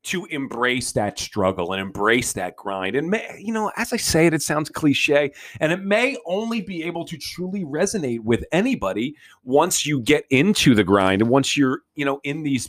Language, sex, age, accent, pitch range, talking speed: English, male, 30-49, American, 110-155 Hz, 205 wpm